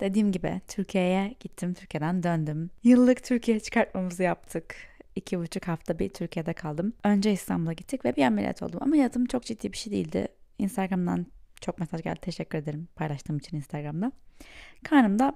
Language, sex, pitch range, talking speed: Turkish, female, 170-235 Hz, 155 wpm